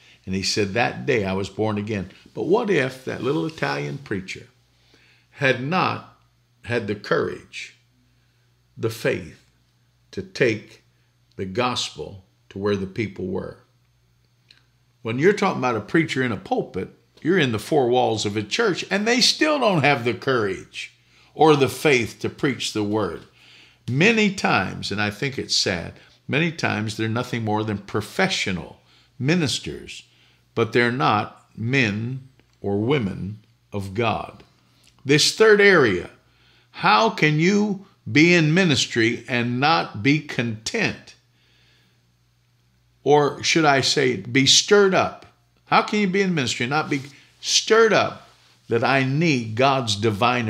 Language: English